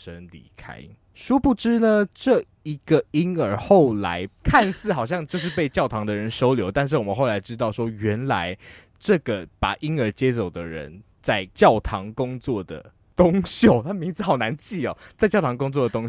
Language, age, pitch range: Chinese, 20-39, 95-140 Hz